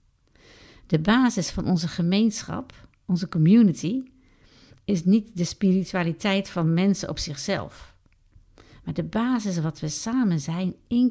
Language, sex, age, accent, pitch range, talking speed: Dutch, female, 50-69, Dutch, 145-200 Hz, 125 wpm